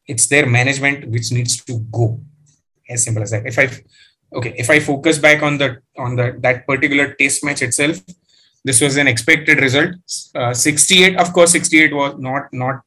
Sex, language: male, English